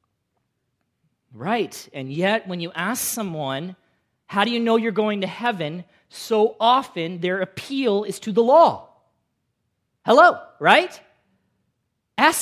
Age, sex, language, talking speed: 40-59, male, English, 125 wpm